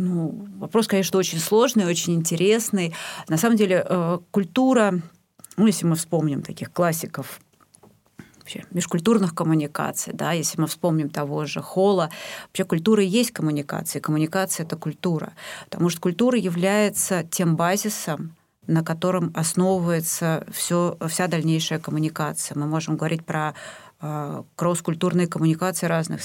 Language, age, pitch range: Russian, 30-49, 160-185 Hz